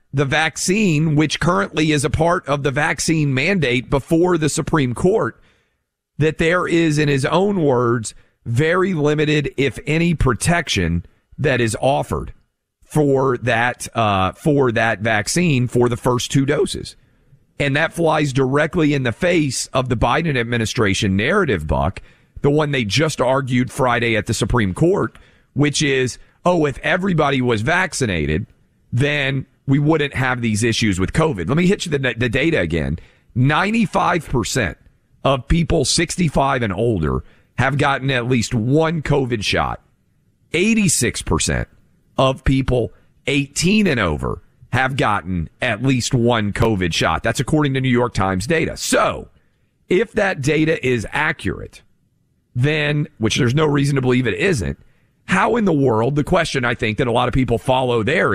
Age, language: 40-59, English